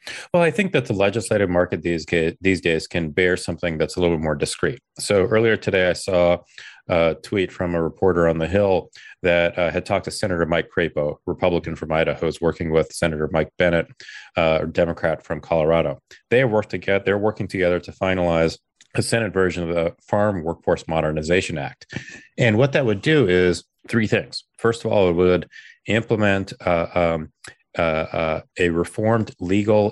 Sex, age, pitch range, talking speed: male, 30-49, 85-100 Hz, 185 wpm